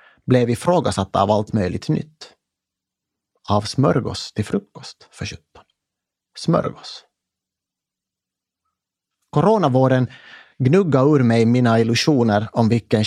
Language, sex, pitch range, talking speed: Swedish, male, 110-145 Hz, 95 wpm